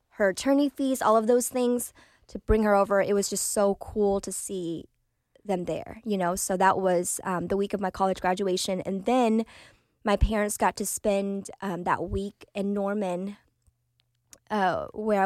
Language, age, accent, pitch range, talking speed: English, 20-39, American, 185-210 Hz, 180 wpm